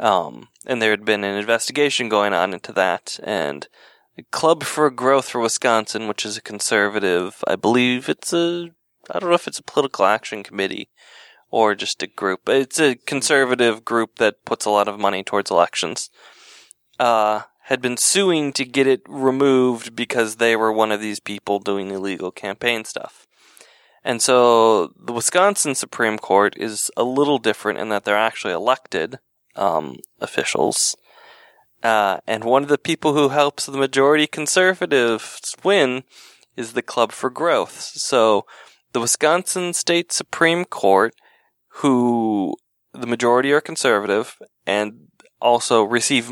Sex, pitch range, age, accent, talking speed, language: male, 110-145 Hz, 20-39, American, 155 wpm, English